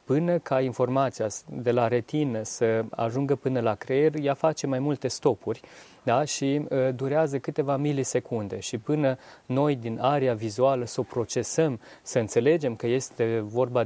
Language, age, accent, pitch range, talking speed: Romanian, 30-49, native, 115-140 Hz, 155 wpm